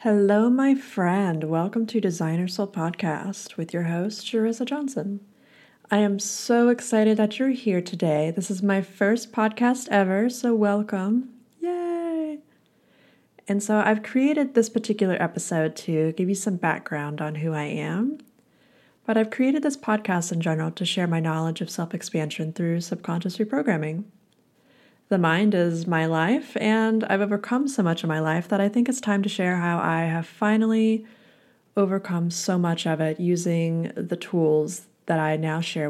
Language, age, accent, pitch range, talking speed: English, 20-39, American, 170-220 Hz, 165 wpm